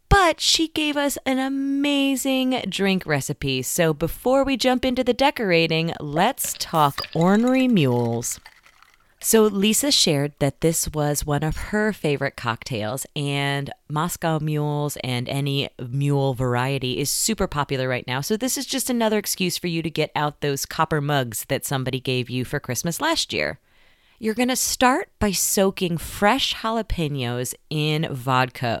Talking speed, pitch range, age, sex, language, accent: 155 wpm, 140-205 Hz, 30-49, female, English, American